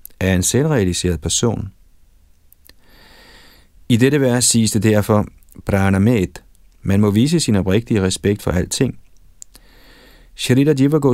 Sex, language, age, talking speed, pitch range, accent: male, Danish, 40-59, 110 wpm, 90-110 Hz, native